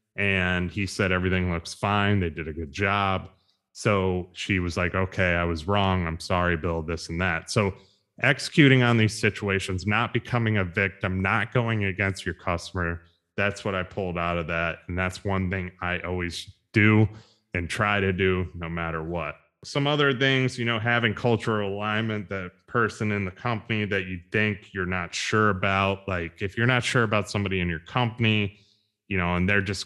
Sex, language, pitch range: male, English, 90-105 Hz